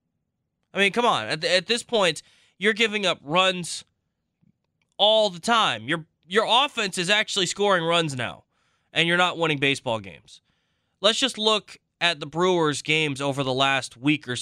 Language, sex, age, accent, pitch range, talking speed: English, male, 20-39, American, 135-195 Hz, 175 wpm